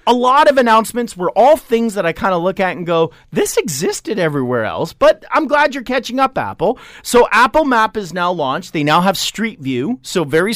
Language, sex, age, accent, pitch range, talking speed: English, male, 40-59, American, 160-240 Hz, 220 wpm